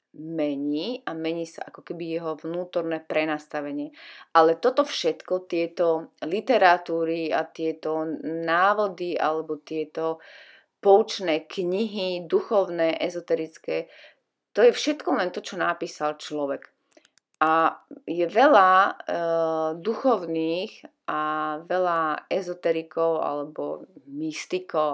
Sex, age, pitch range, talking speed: female, 30-49, 155-195 Hz, 100 wpm